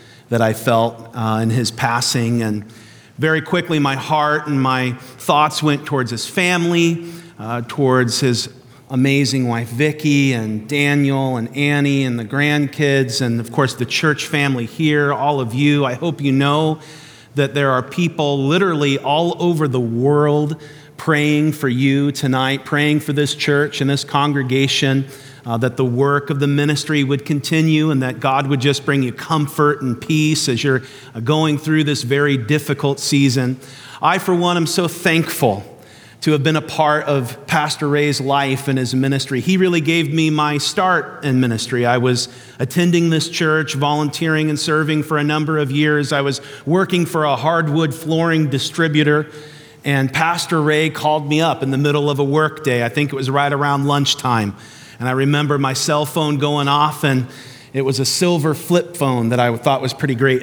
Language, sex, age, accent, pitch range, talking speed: English, male, 40-59, American, 130-155 Hz, 180 wpm